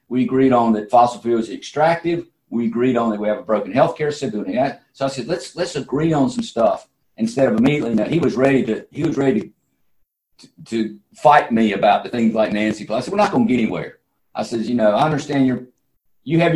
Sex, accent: male, American